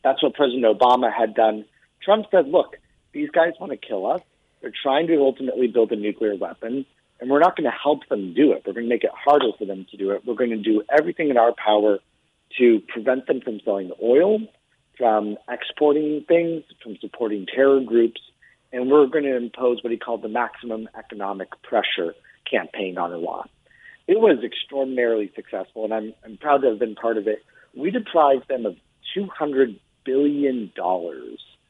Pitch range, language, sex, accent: 110-135 Hz, English, male, American